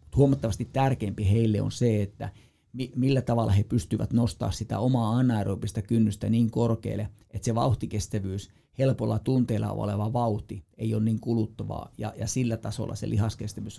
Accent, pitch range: native, 105-120 Hz